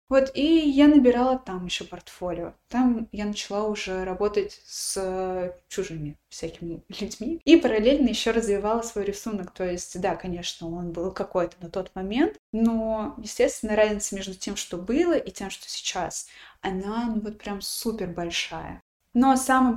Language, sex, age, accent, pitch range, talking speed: Russian, female, 20-39, native, 200-240 Hz, 155 wpm